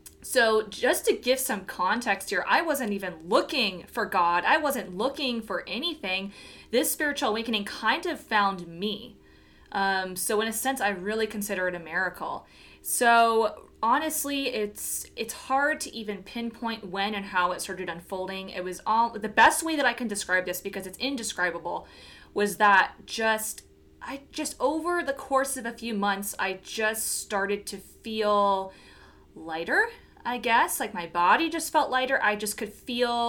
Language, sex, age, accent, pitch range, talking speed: English, female, 20-39, American, 190-250 Hz, 170 wpm